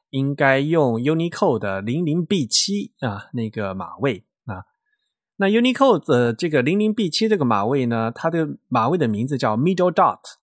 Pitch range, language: 110-175 Hz, Chinese